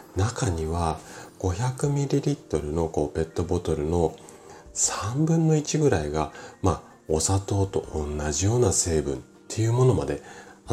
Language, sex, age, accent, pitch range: Japanese, male, 40-59, native, 80-125 Hz